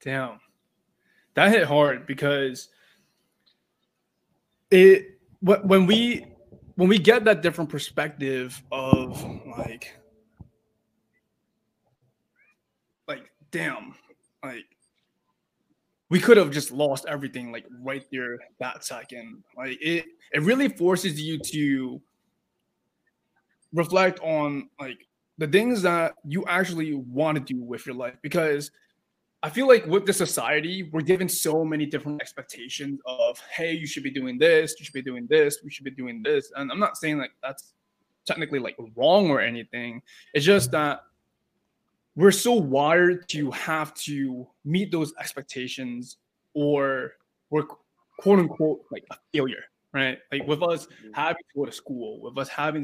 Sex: male